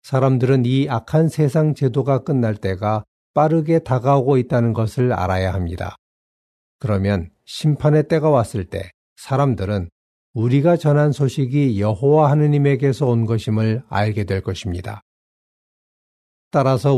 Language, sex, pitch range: Korean, male, 100-140 Hz